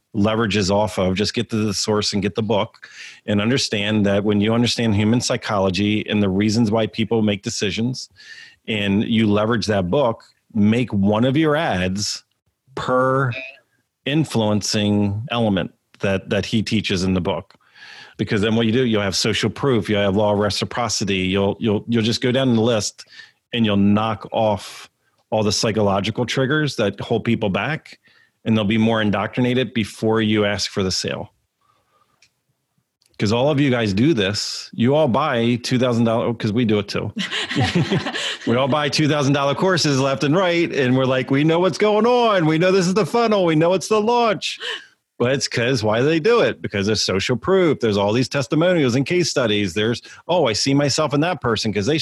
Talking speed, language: 190 wpm, English